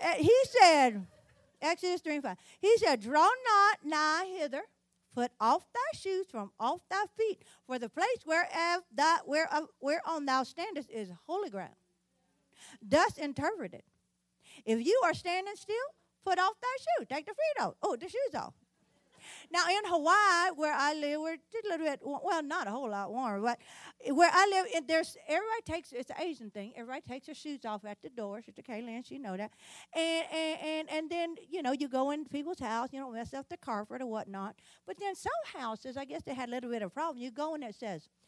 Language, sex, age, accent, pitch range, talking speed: English, female, 40-59, American, 250-360 Hz, 210 wpm